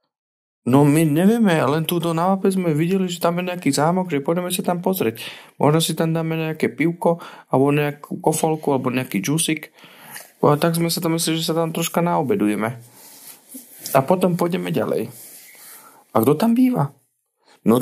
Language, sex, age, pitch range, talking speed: Slovak, male, 40-59, 135-180 Hz, 165 wpm